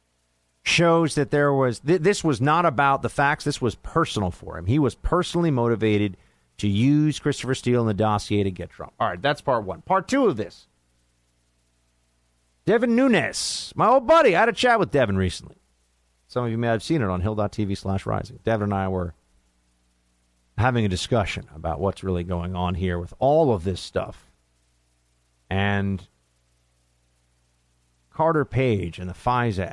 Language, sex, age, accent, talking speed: English, male, 50-69, American, 170 wpm